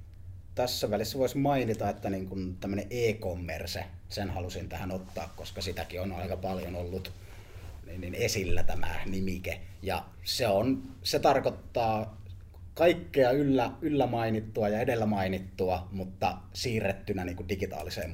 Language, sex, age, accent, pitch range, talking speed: Finnish, male, 30-49, native, 90-105 Hz, 115 wpm